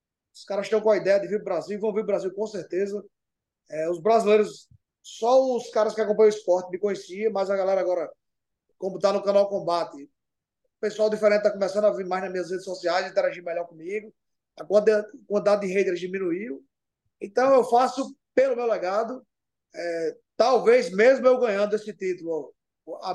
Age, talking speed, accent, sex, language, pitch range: 20-39, 185 wpm, Brazilian, male, English, 190-235 Hz